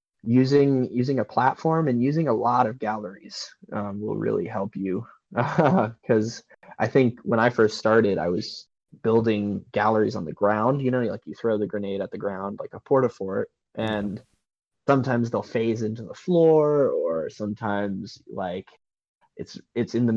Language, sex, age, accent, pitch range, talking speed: English, male, 20-39, American, 105-120 Hz, 175 wpm